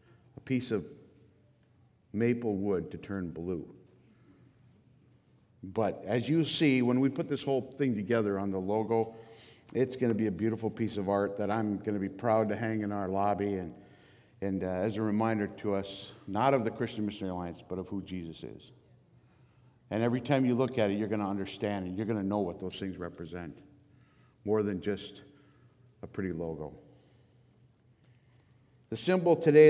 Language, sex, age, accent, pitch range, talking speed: English, male, 50-69, American, 105-140 Hz, 180 wpm